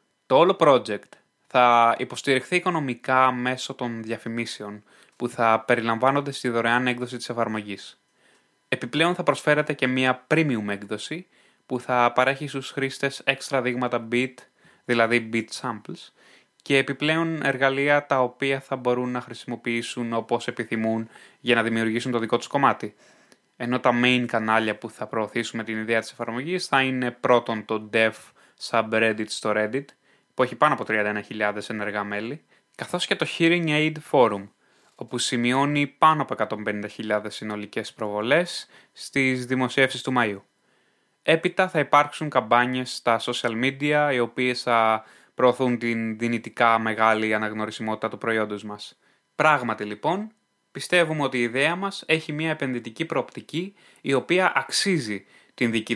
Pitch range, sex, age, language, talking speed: 110-135 Hz, male, 20-39, Greek, 140 wpm